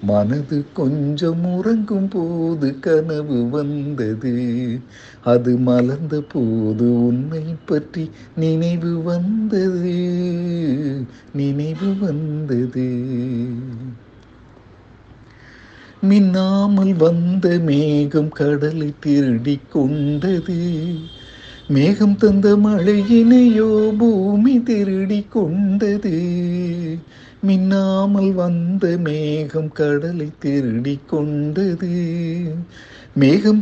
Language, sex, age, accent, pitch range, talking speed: Tamil, male, 60-79, native, 140-200 Hz, 60 wpm